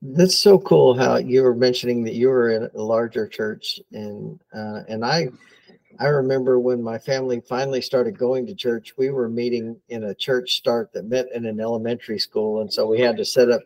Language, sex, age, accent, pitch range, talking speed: English, male, 50-69, American, 115-135 Hz, 210 wpm